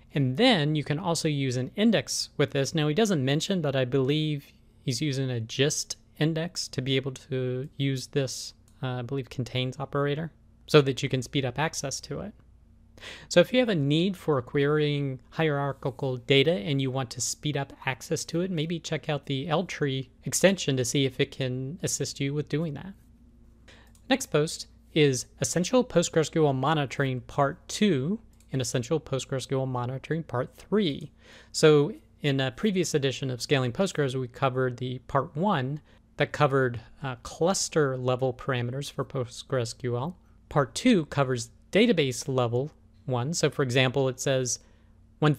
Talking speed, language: 165 wpm, English